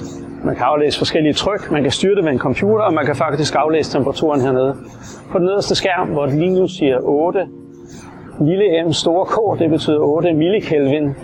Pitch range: 120-150 Hz